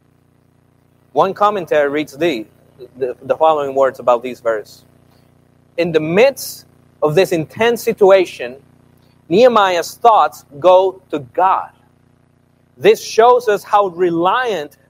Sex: male